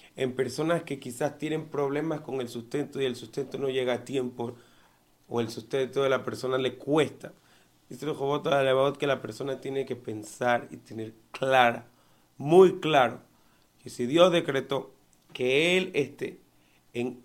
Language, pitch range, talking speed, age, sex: Spanish, 110-135 Hz, 160 wpm, 30-49, male